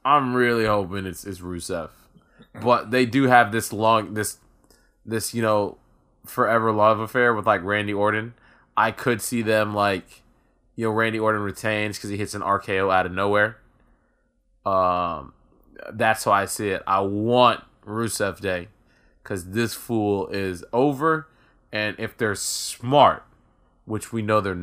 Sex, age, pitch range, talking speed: male, 20-39, 95-120 Hz, 155 wpm